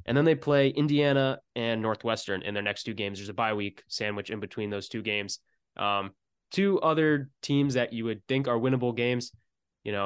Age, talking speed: 20-39, 205 wpm